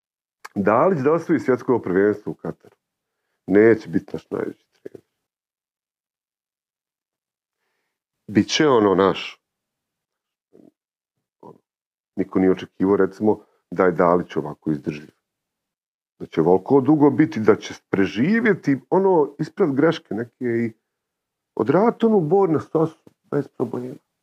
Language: Croatian